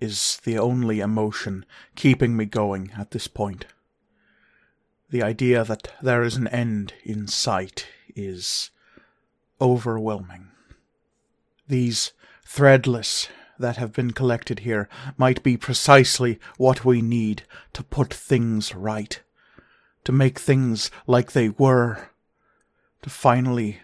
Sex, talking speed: male, 115 wpm